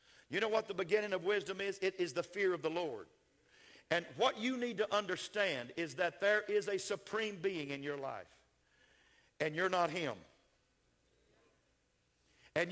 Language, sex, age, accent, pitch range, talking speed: English, male, 50-69, American, 185-225 Hz, 170 wpm